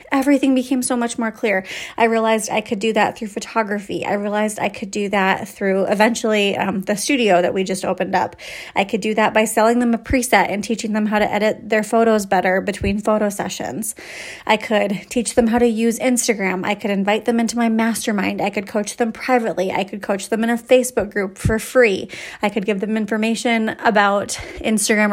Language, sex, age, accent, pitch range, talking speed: English, female, 30-49, American, 205-235 Hz, 210 wpm